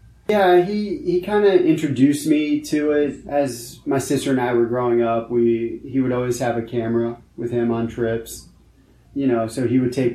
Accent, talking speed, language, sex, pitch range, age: American, 200 wpm, English, male, 115-130 Hz, 30-49